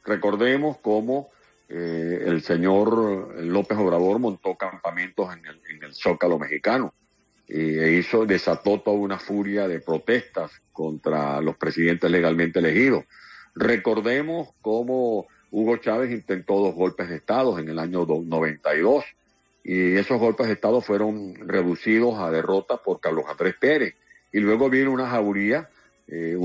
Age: 50-69